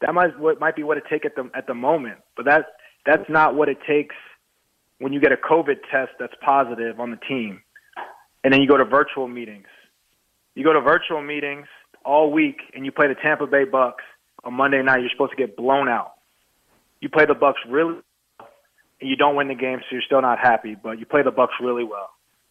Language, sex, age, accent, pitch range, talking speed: English, male, 20-39, American, 125-150 Hz, 225 wpm